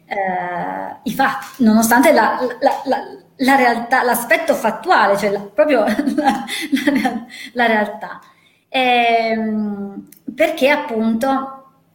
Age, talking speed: 30-49, 65 wpm